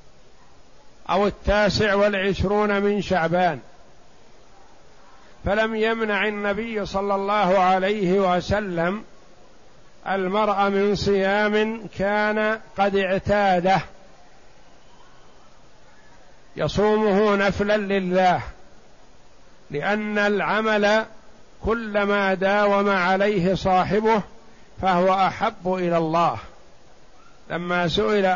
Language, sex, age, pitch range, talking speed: Arabic, male, 50-69, 185-205 Hz, 70 wpm